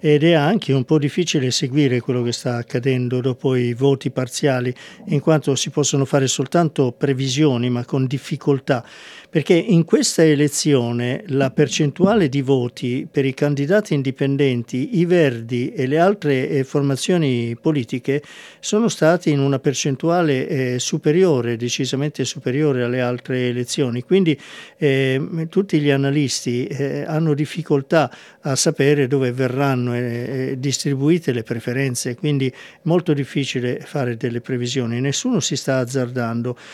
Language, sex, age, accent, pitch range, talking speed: Italian, male, 50-69, native, 125-155 Hz, 135 wpm